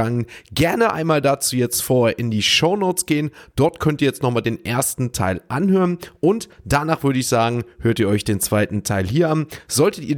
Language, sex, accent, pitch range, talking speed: German, male, German, 110-145 Hz, 195 wpm